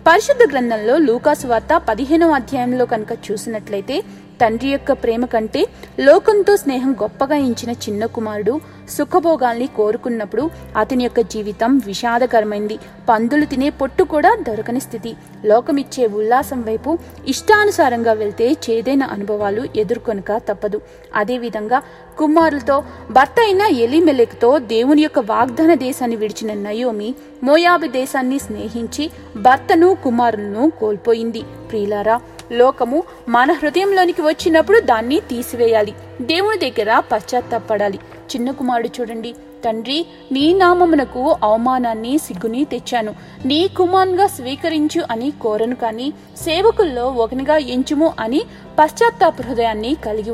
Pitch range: 225-305 Hz